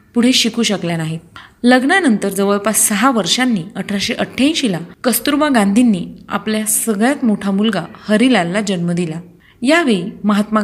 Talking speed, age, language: 120 wpm, 30-49, Marathi